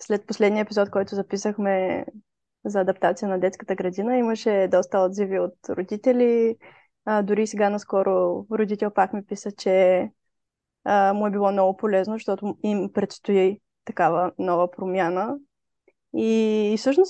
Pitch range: 205-245 Hz